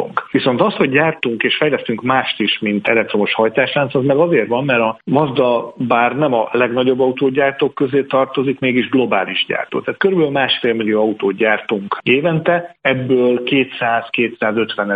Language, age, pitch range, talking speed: Hungarian, 40-59, 110-135 Hz, 150 wpm